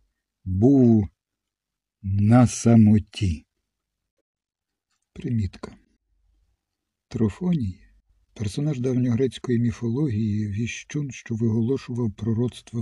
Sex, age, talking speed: male, 60-79, 60 wpm